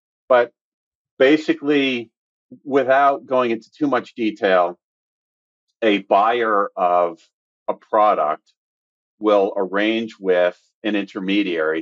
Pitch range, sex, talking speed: 95-130 Hz, male, 90 wpm